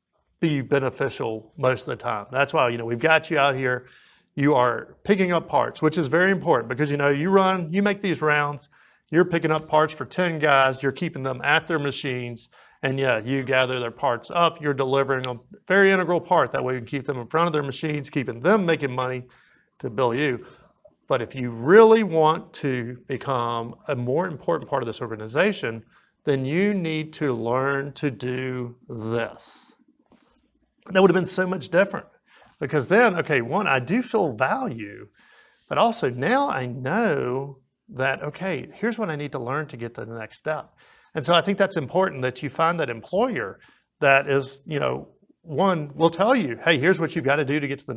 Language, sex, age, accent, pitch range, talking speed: English, male, 40-59, American, 130-180 Hz, 205 wpm